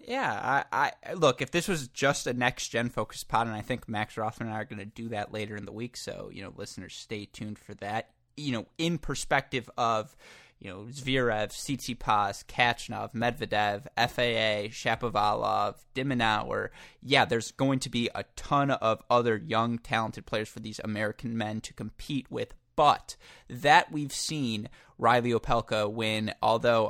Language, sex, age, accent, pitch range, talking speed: English, male, 20-39, American, 110-125 Hz, 170 wpm